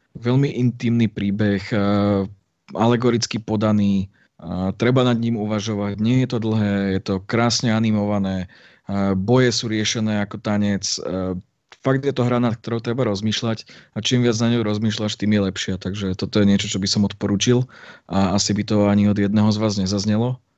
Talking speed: 165 wpm